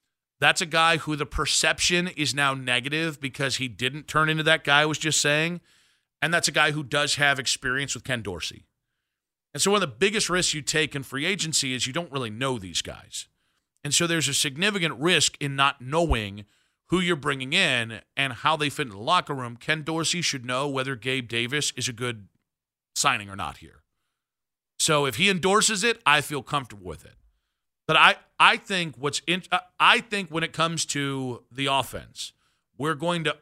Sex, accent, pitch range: male, American, 130-165 Hz